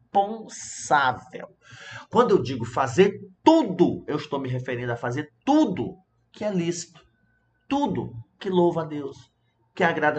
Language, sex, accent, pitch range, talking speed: Portuguese, male, Brazilian, 120-160 Hz, 135 wpm